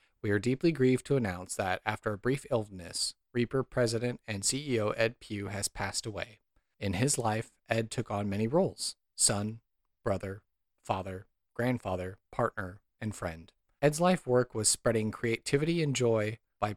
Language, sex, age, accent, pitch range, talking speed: English, male, 40-59, American, 105-130 Hz, 155 wpm